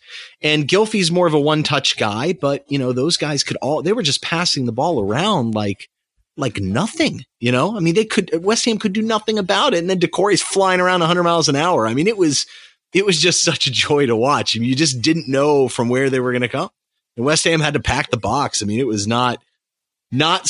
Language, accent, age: English, American, 30-49